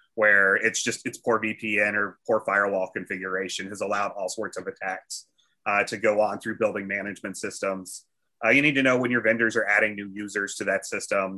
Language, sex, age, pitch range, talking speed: English, male, 30-49, 105-120 Hz, 205 wpm